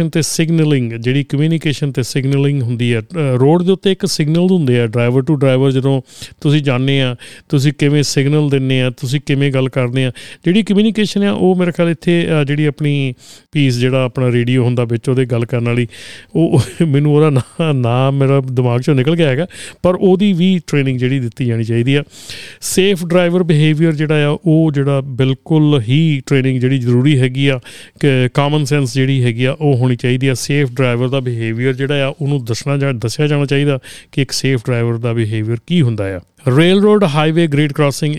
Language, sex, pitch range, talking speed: Punjabi, male, 125-150 Hz, 150 wpm